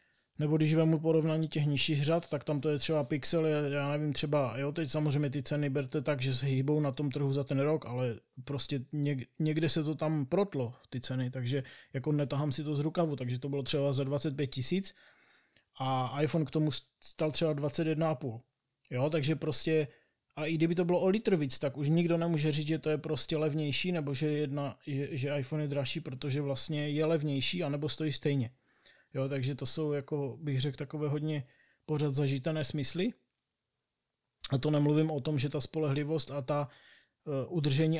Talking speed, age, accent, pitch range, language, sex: 190 wpm, 20-39, native, 140-155 Hz, Czech, male